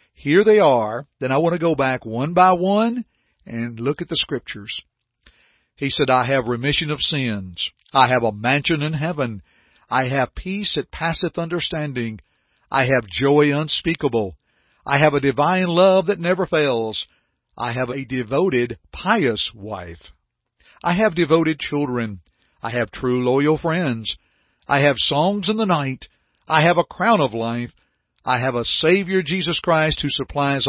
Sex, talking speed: male, 160 wpm